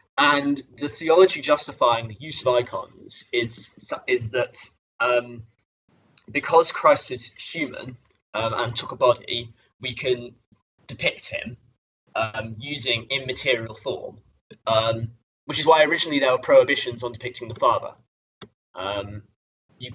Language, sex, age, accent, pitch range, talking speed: English, male, 20-39, British, 110-135 Hz, 130 wpm